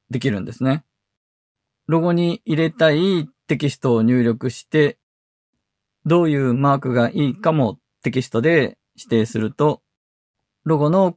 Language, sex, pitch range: Japanese, male, 120-160 Hz